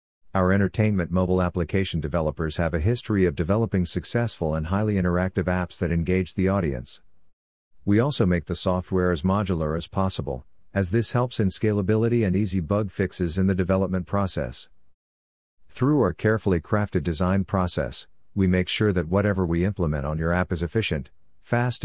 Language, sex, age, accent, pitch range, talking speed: English, male, 50-69, American, 85-100 Hz, 165 wpm